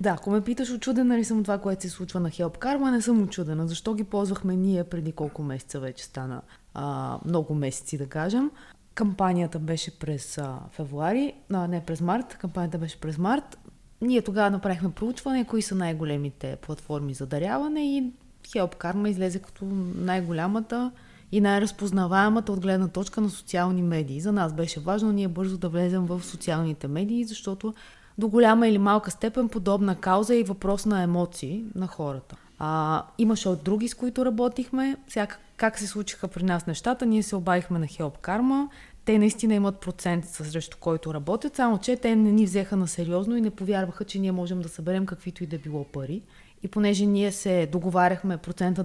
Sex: female